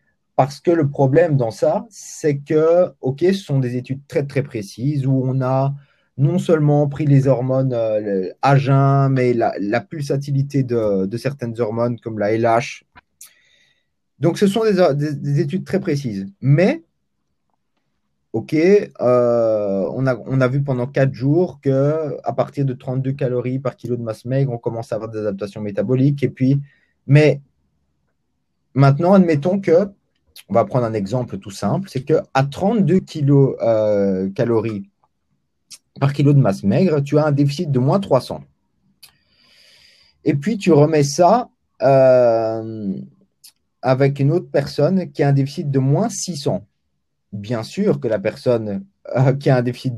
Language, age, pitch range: French, 20-39, 115-150 Hz